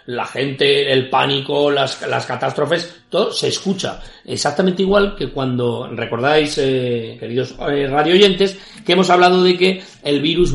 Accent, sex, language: Spanish, male, Spanish